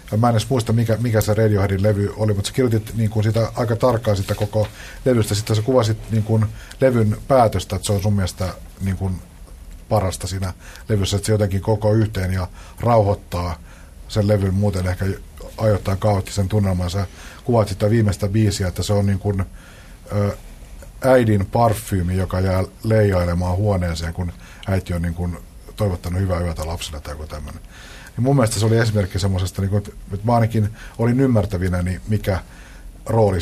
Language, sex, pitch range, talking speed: Finnish, male, 90-110 Hz, 170 wpm